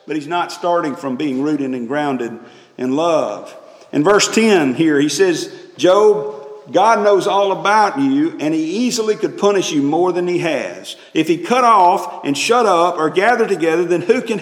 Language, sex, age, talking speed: English, male, 40-59, 190 wpm